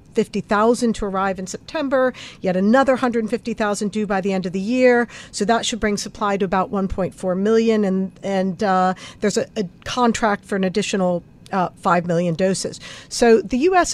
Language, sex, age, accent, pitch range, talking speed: English, female, 50-69, American, 190-230 Hz, 175 wpm